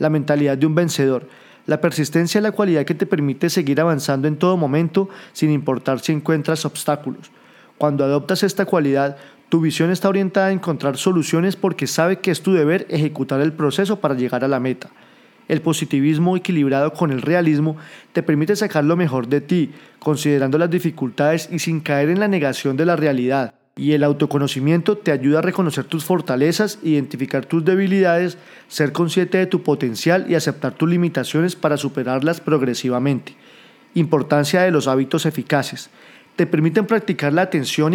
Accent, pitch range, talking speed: Colombian, 145-180 Hz, 170 wpm